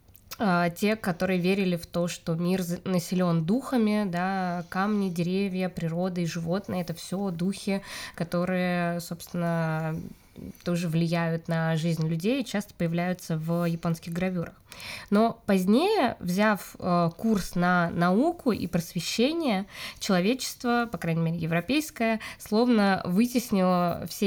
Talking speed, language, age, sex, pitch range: 115 wpm, Russian, 20-39, female, 175-220 Hz